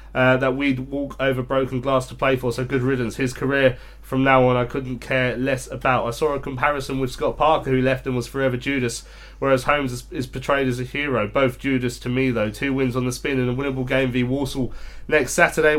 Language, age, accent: English, 30-49, British